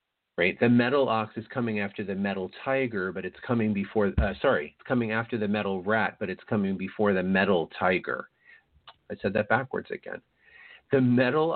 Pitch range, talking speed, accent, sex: 95-115 Hz, 185 wpm, American, male